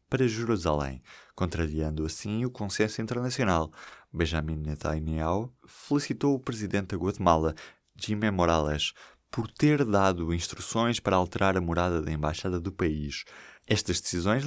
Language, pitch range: Portuguese, 85-125 Hz